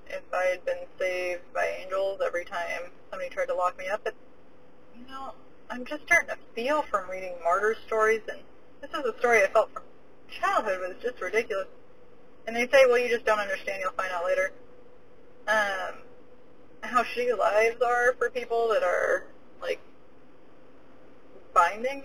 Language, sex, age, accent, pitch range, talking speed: English, female, 30-49, American, 185-285 Hz, 170 wpm